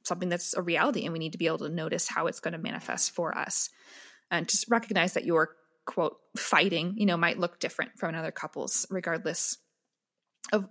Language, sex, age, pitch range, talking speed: English, female, 20-39, 175-225 Hz, 200 wpm